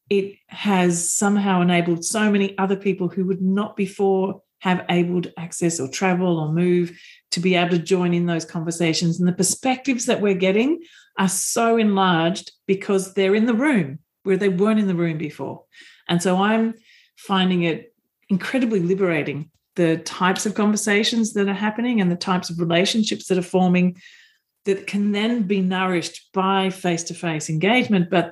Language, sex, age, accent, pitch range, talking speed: English, female, 40-59, Australian, 170-205 Hz, 170 wpm